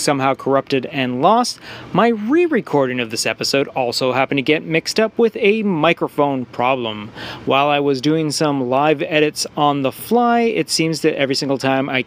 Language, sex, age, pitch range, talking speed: English, male, 30-49, 130-180 Hz, 180 wpm